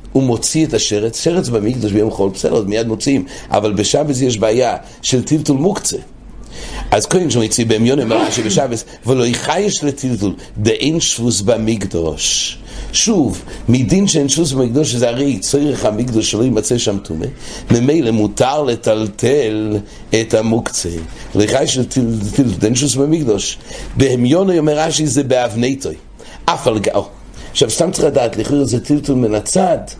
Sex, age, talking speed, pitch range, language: male, 60-79, 70 wpm, 110-145 Hz, English